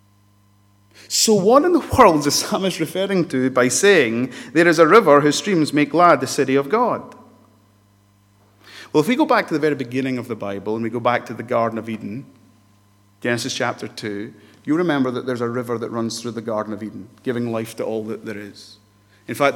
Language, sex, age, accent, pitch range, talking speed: English, male, 30-49, British, 115-145 Hz, 210 wpm